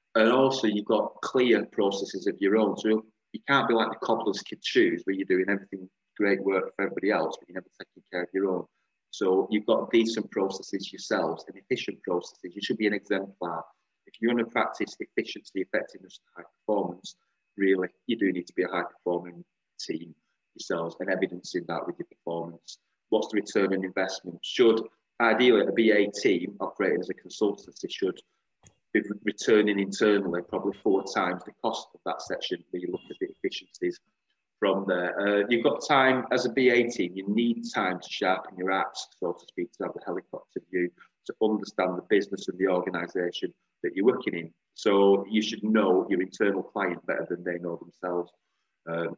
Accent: British